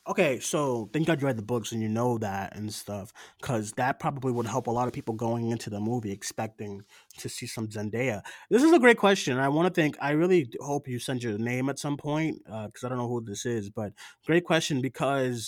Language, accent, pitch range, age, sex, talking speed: English, American, 120-165 Hz, 30-49, male, 245 wpm